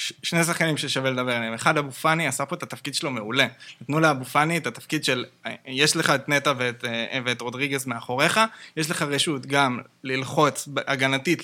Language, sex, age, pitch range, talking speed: Hebrew, male, 20-39, 130-155 Hz, 170 wpm